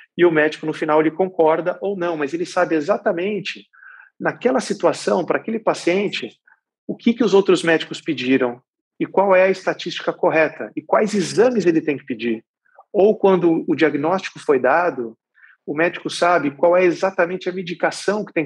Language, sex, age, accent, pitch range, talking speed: Portuguese, male, 40-59, Brazilian, 140-185 Hz, 175 wpm